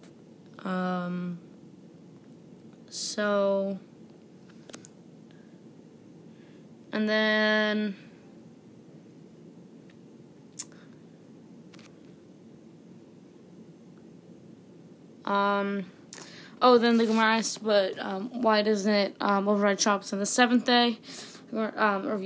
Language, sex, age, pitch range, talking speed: English, female, 20-39, 195-220 Hz, 60 wpm